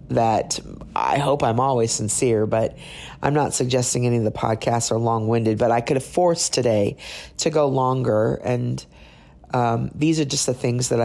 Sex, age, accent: female, 40-59, American